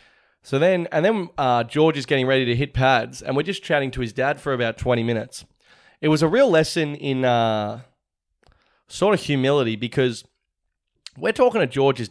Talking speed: 190 wpm